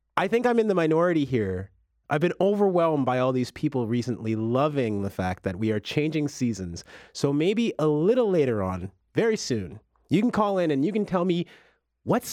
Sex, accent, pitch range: male, American, 110-170 Hz